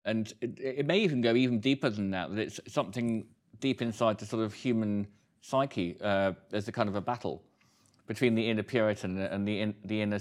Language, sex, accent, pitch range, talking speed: English, male, British, 105-135 Hz, 225 wpm